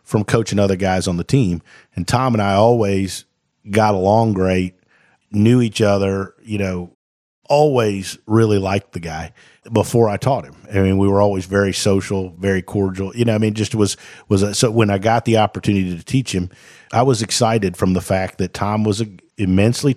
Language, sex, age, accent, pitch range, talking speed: English, male, 50-69, American, 95-110 Hz, 195 wpm